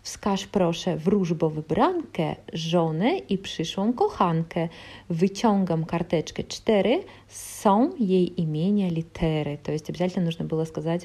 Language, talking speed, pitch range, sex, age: Polish, 115 wpm, 170-210 Hz, female, 30-49